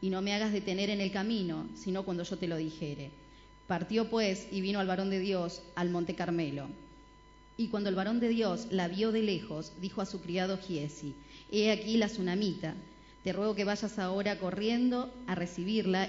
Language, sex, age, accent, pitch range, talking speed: Spanish, female, 30-49, Argentinian, 175-215 Hz, 195 wpm